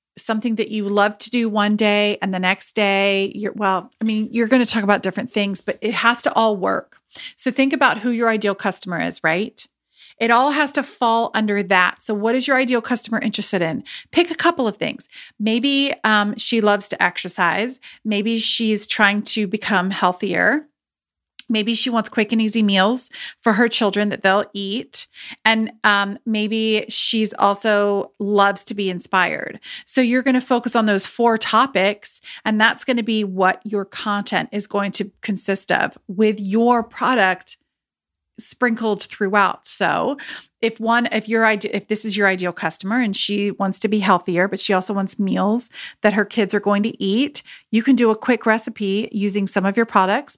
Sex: female